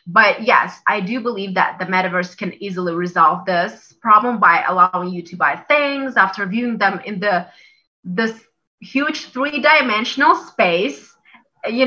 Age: 20-39